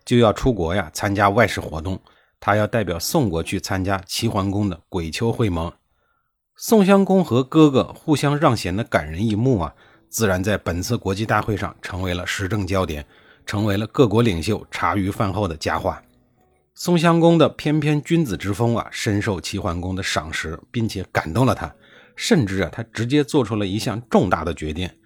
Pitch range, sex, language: 90-125 Hz, male, Chinese